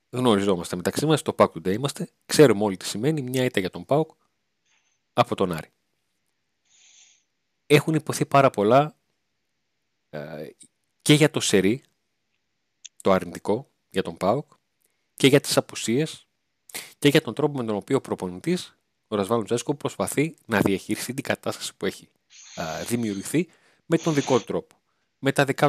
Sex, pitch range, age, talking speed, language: male, 100-140 Hz, 30-49, 155 wpm, Greek